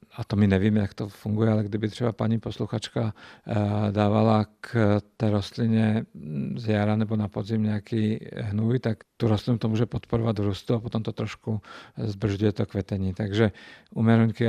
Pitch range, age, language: 105-115 Hz, 50-69, Czech